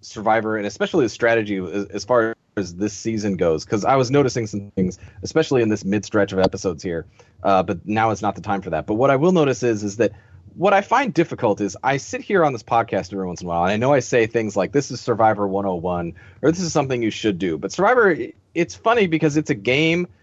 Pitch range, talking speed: 105-145 Hz, 245 wpm